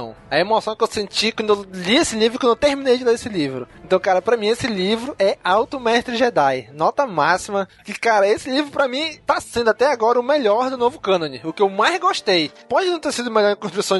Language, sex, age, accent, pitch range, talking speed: Portuguese, male, 20-39, Brazilian, 195-250 Hz, 245 wpm